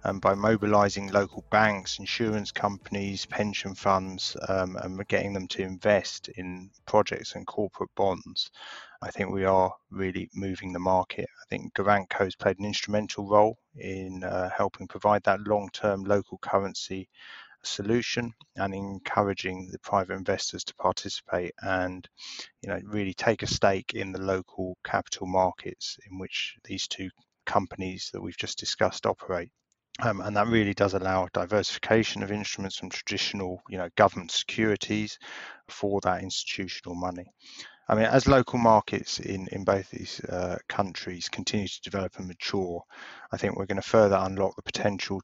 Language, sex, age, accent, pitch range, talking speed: English, male, 30-49, British, 95-105 Hz, 155 wpm